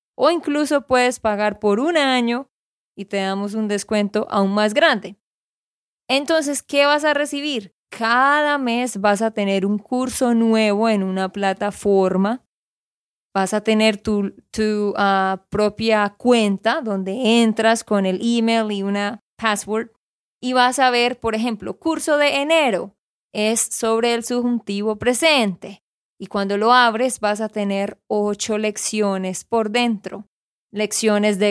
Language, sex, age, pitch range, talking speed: Spanish, female, 20-39, 200-250 Hz, 140 wpm